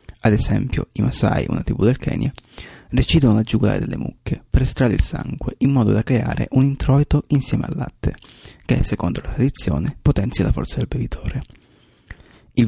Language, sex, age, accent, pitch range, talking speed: Italian, male, 30-49, native, 105-130 Hz, 170 wpm